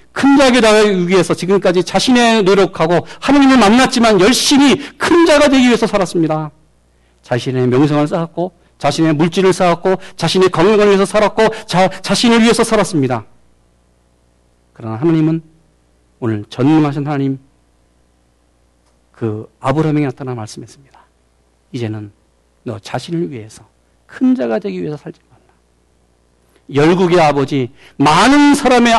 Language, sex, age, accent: Korean, male, 40-59, native